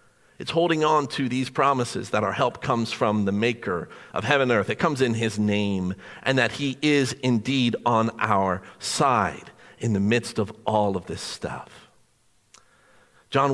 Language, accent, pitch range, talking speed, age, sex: English, American, 120-170 Hz, 175 wpm, 50-69, male